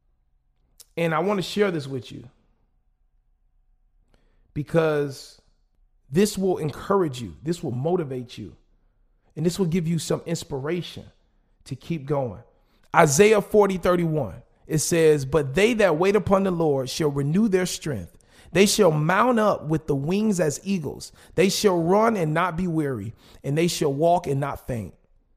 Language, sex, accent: English, male, American